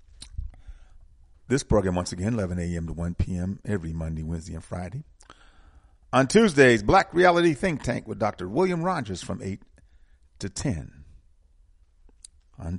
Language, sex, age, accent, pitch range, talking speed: English, male, 50-69, American, 80-110 Hz, 135 wpm